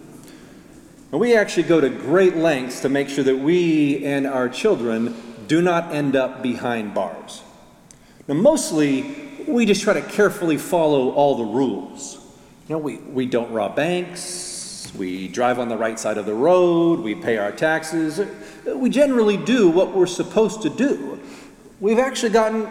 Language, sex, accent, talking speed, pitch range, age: English, male, American, 165 wpm, 135-180 Hz, 40-59